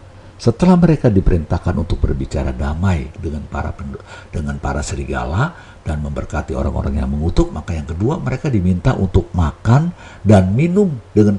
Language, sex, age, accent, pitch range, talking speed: Indonesian, male, 60-79, native, 85-115 Hz, 135 wpm